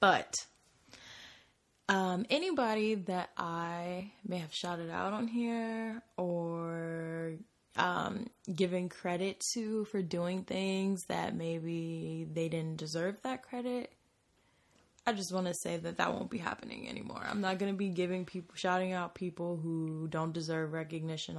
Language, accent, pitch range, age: English, American, 165-195 Hz, 10-29